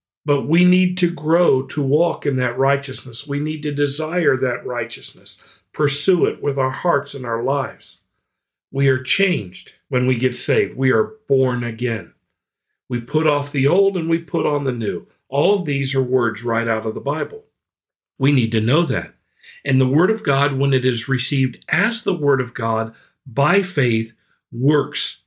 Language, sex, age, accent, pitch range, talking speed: English, male, 50-69, American, 120-150 Hz, 185 wpm